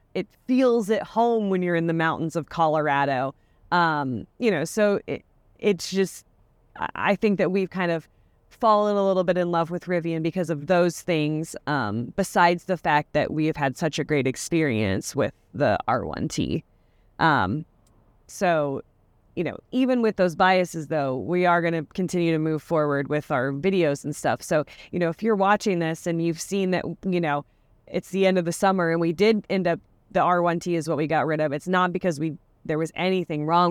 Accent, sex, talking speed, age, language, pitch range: American, female, 200 wpm, 30-49, English, 145-190 Hz